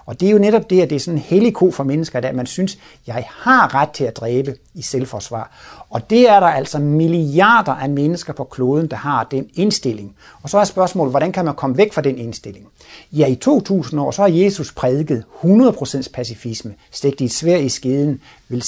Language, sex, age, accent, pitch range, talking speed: Danish, male, 60-79, native, 125-175 Hz, 220 wpm